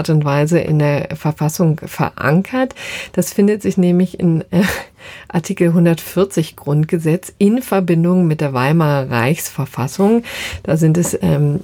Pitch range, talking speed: 155-185 Hz, 135 wpm